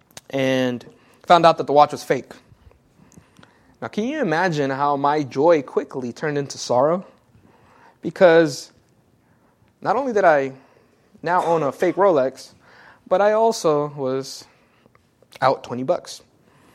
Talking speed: 130 wpm